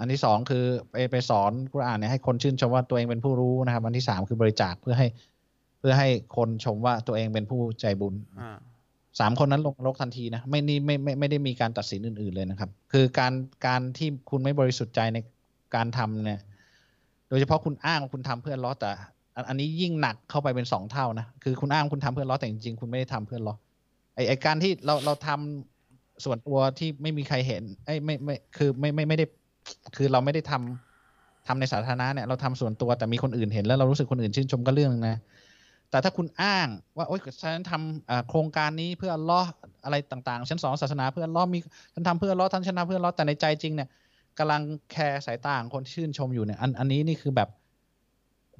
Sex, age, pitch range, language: male, 20-39, 115-145 Hz, Thai